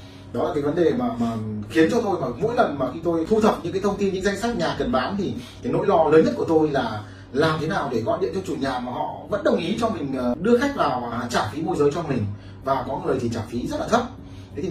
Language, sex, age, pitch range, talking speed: Vietnamese, male, 20-39, 115-160 Hz, 300 wpm